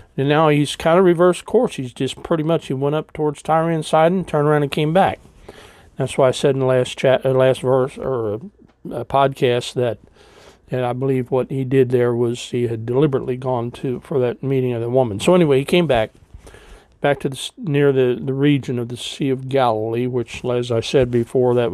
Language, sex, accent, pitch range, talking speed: English, male, American, 120-140 Hz, 225 wpm